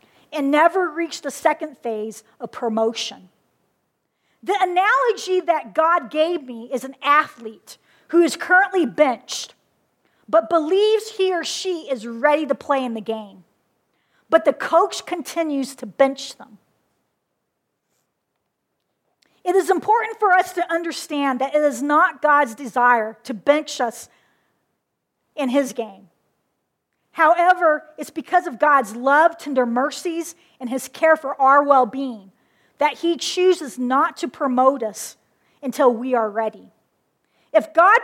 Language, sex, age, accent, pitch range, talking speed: English, female, 50-69, American, 255-335 Hz, 135 wpm